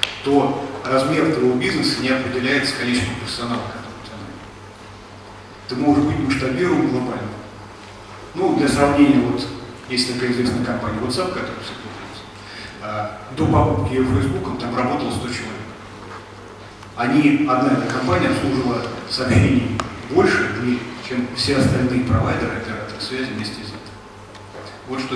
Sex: male